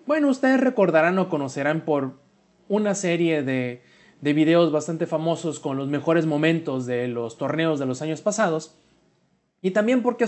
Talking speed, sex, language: 160 wpm, male, Spanish